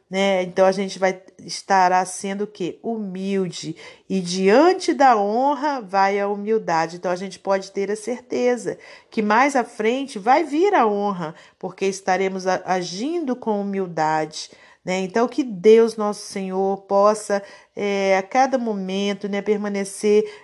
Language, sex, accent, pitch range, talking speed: Portuguese, female, Brazilian, 190-230 Hz, 140 wpm